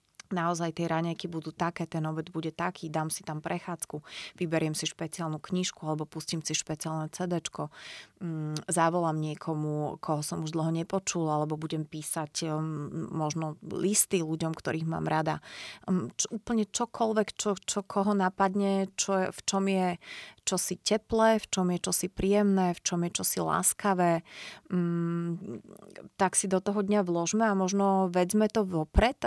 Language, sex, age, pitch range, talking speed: Slovak, female, 30-49, 165-190 Hz, 150 wpm